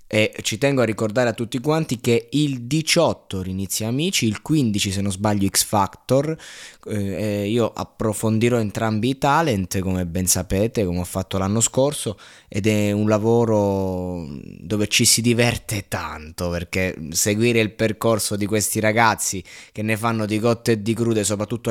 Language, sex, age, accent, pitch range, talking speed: Italian, male, 20-39, native, 105-125 Hz, 165 wpm